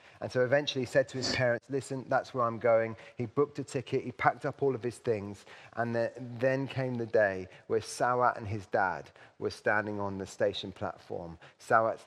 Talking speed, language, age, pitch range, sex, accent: 205 wpm, English, 30-49, 95-120 Hz, male, British